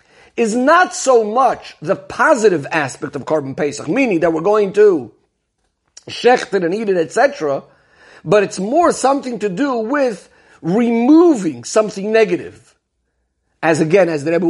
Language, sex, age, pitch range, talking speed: English, male, 50-69, 155-240 Hz, 145 wpm